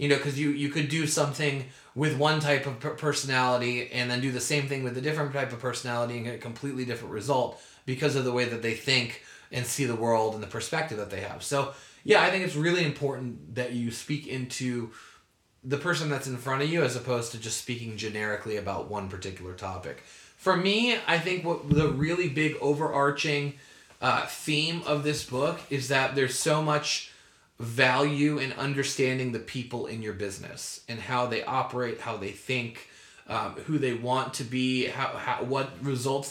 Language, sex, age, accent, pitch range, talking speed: English, male, 20-39, American, 125-150 Hz, 200 wpm